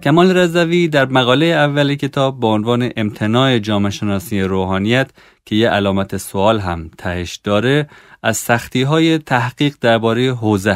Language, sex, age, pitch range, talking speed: Persian, male, 30-49, 100-130 Hz, 135 wpm